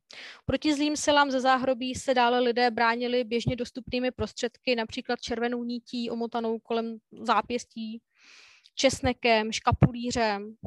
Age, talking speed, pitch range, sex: 20-39, 110 wpm, 220-255 Hz, female